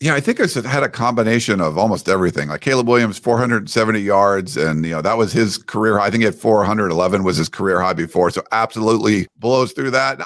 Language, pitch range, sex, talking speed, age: English, 110-140 Hz, male, 215 wpm, 50-69